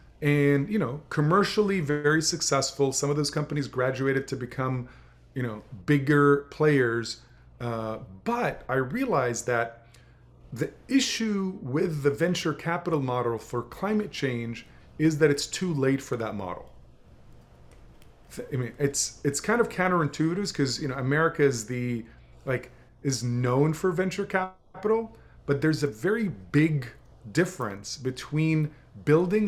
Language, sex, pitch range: English, male, 125-155 Hz